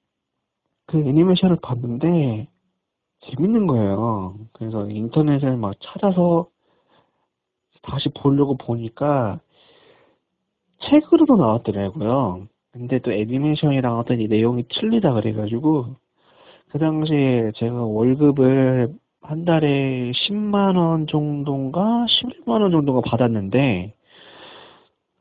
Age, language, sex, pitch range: 40-59, Korean, male, 120-170 Hz